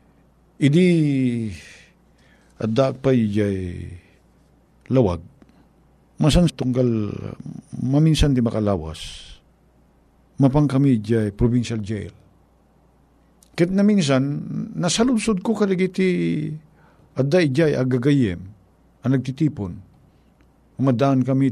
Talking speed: 75 wpm